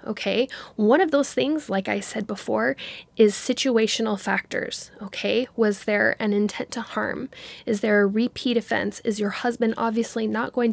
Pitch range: 210-245 Hz